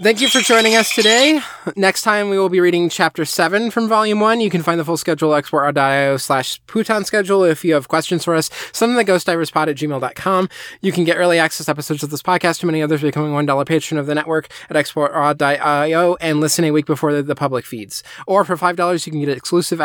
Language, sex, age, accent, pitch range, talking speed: English, male, 20-39, American, 140-175 Hz, 235 wpm